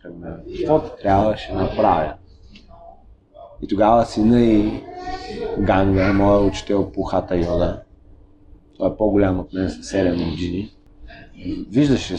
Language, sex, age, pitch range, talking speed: Bulgarian, male, 20-39, 95-125 Hz, 110 wpm